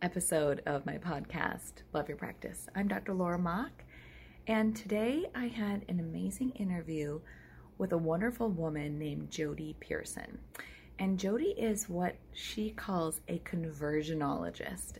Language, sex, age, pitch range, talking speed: English, female, 30-49, 150-200 Hz, 130 wpm